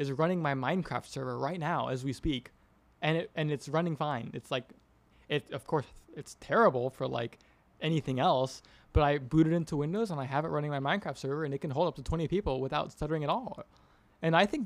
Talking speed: 225 wpm